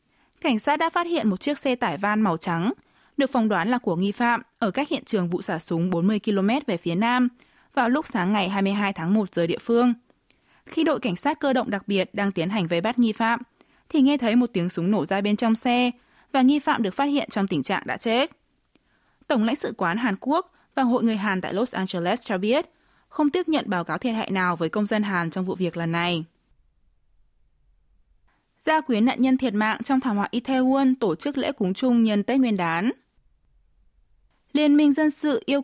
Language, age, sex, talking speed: Vietnamese, 20-39, female, 225 wpm